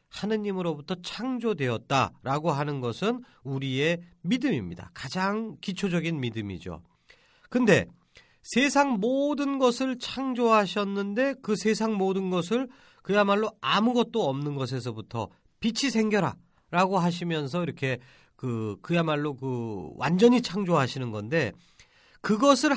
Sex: male